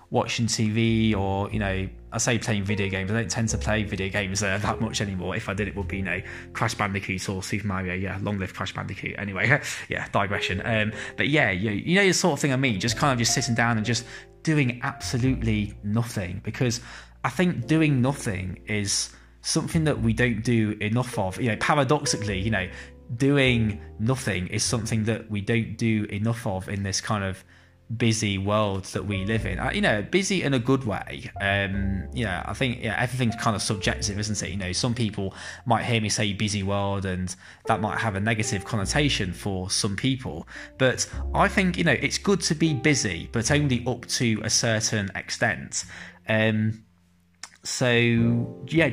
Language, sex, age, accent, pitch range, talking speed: English, male, 20-39, British, 95-120 Hz, 195 wpm